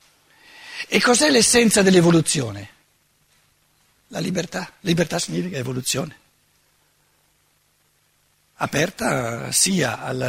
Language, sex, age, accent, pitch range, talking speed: Italian, male, 60-79, native, 145-220 Hz, 70 wpm